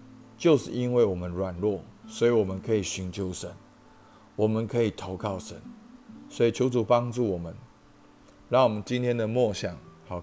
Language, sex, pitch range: Chinese, male, 95-125 Hz